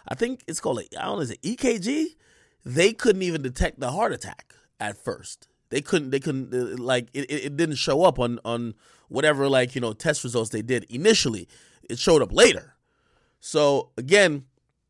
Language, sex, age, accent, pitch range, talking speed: English, male, 20-39, American, 125-150 Hz, 190 wpm